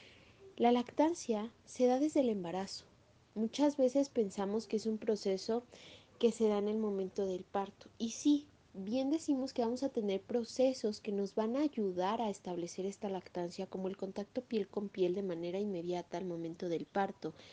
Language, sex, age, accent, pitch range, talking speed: Spanish, female, 30-49, Mexican, 190-235 Hz, 180 wpm